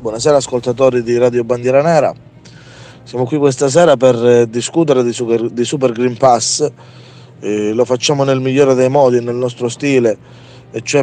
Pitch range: 120-135 Hz